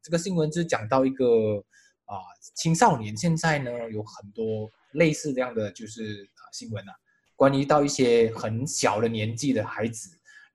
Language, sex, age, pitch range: Chinese, male, 20-39, 115-165 Hz